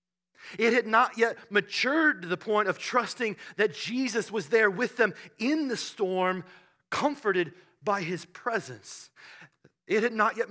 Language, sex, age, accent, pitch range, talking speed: English, male, 30-49, American, 180-230 Hz, 155 wpm